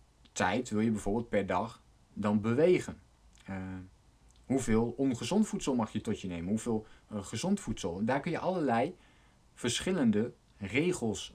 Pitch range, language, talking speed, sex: 95-120 Hz, Dutch, 145 wpm, male